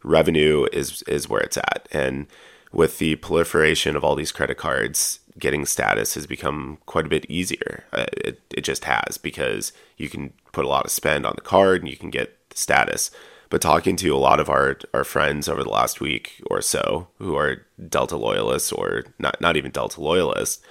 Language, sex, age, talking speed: English, male, 30-49, 200 wpm